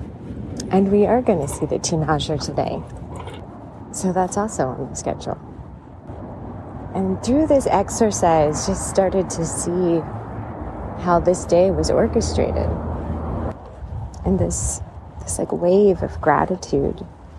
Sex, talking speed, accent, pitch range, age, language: female, 120 wpm, American, 115-185 Hz, 30-49, English